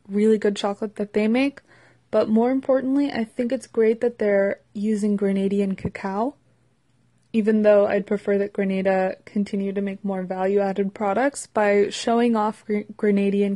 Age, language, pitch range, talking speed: 20-39, English, 200-225 Hz, 150 wpm